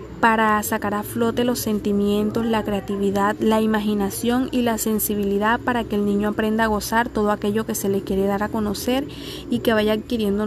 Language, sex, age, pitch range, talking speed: Spanish, female, 20-39, 200-240 Hz, 190 wpm